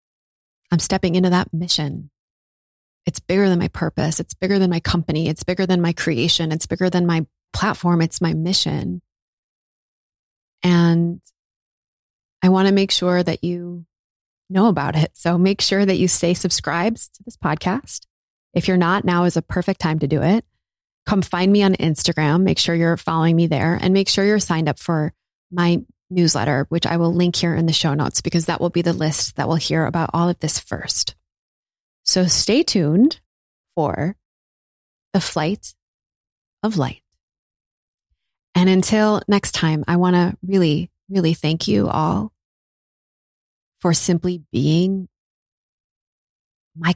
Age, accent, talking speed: 20-39, American, 160 wpm